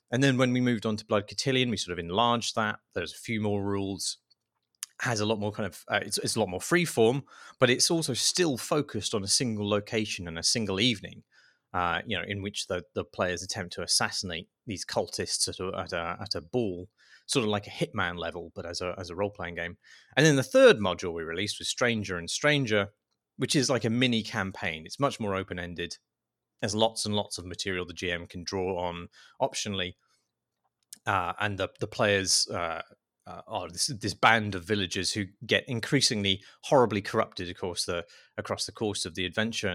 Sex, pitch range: male, 95-120 Hz